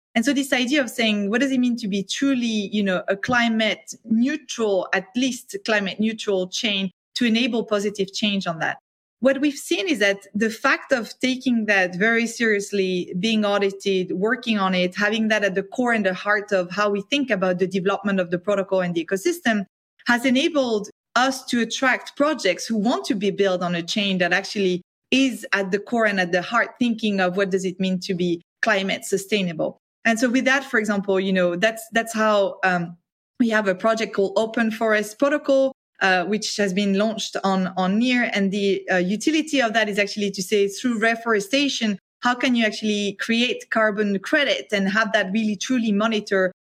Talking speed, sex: 200 wpm, female